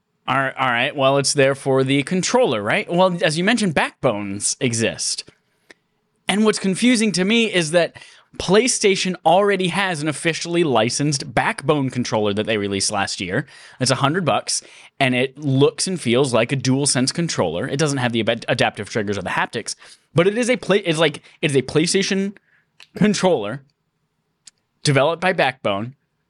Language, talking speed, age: English, 170 wpm, 10-29